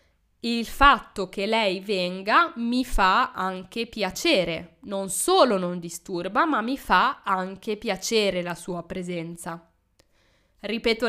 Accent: native